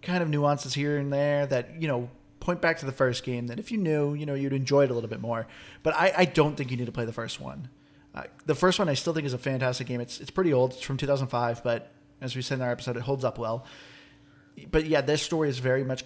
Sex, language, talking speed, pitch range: male, English, 285 wpm, 125-150 Hz